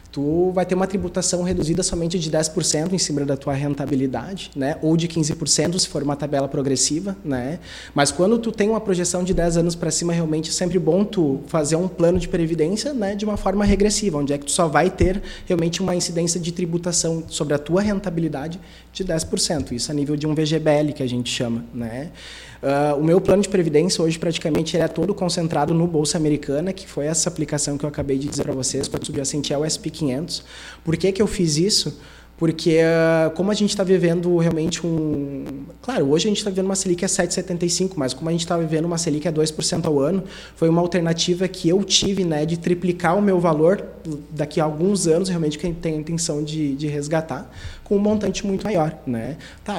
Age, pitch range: 20-39, 150-185 Hz